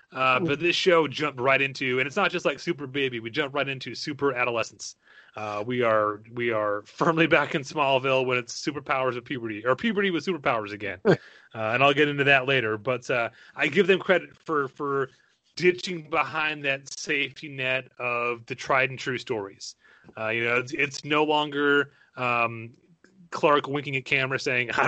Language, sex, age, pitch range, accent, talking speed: English, male, 30-49, 120-155 Hz, American, 190 wpm